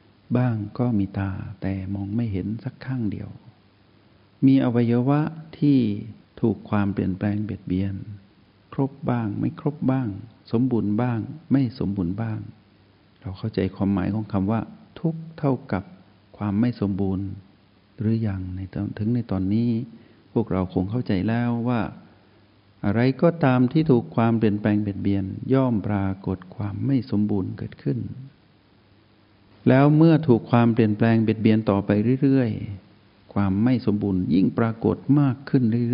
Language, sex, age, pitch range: Thai, male, 60-79, 100-115 Hz